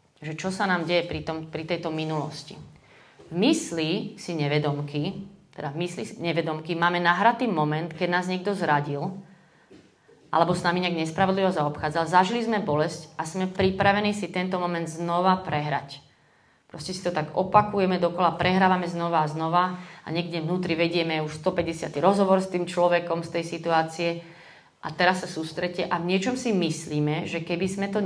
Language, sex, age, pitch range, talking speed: Slovak, female, 30-49, 165-190 Hz, 170 wpm